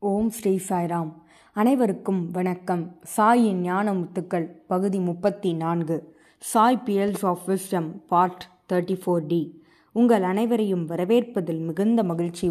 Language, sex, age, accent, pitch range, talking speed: Tamil, female, 20-39, native, 180-240 Hz, 95 wpm